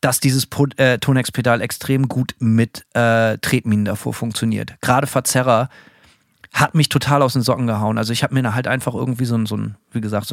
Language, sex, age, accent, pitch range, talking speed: German, male, 40-59, German, 120-150 Hz, 205 wpm